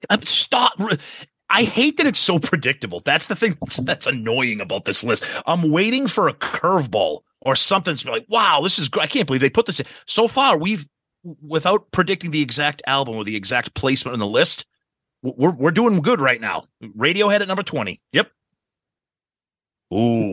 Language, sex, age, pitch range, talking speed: English, male, 30-49, 115-155 Hz, 190 wpm